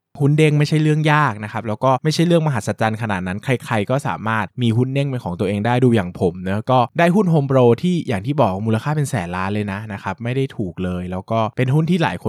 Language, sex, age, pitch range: Thai, male, 20-39, 100-135 Hz